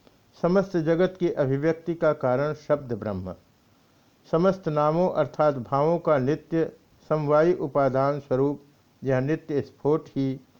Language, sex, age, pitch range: Hindi, male, 60-79, 125-165 Hz